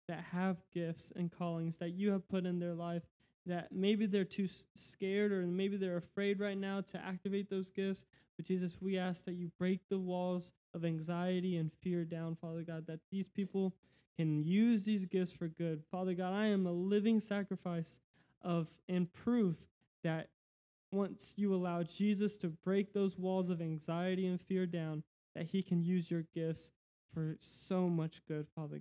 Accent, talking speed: American, 180 wpm